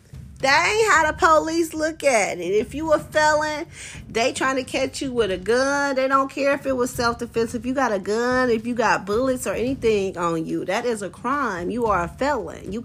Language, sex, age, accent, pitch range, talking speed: English, female, 30-49, American, 225-345 Hz, 235 wpm